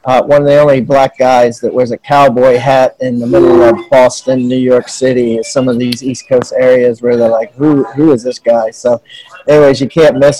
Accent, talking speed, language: American, 230 wpm, English